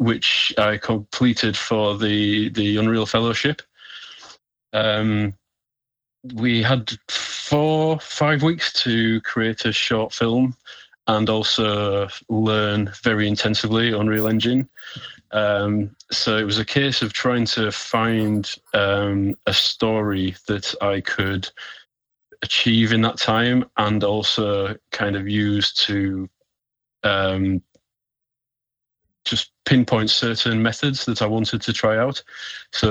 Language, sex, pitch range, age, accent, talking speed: English, male, 105-115 Hz, 30-49, British, 115 wpm